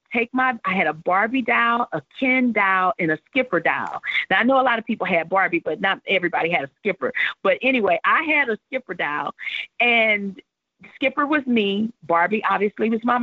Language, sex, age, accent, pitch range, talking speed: English, female, 40-59, American, 185-245 Hz, 200 wpm